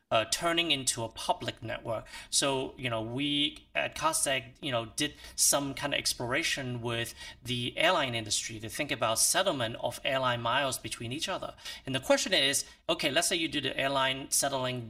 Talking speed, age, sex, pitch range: 180 wpm, 30-49, male, 125-175 Hz